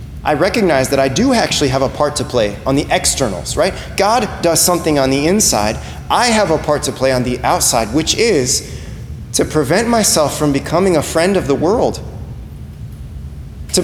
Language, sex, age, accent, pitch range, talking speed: English, male, 20-39, American, 140-210 Hz, 185 wpm